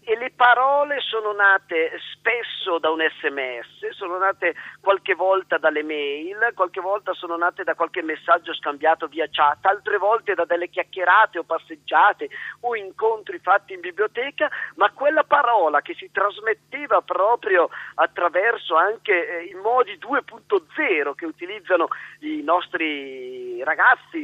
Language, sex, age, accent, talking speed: Italian, male, 40-59, native, 135 wpm